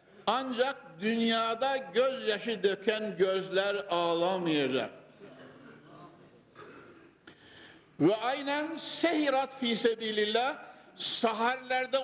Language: Turkish